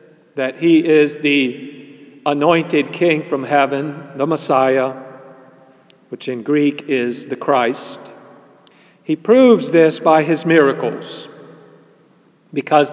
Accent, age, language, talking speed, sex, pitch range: American, 50-69, English, 105 wpm, male, 140-180 Hz